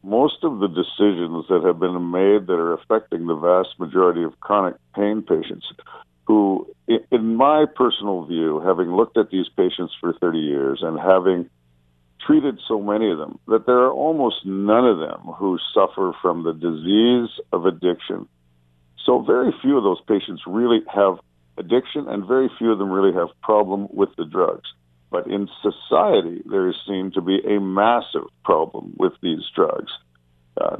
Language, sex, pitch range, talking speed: English, male, 85-105 Hz, 170 wpm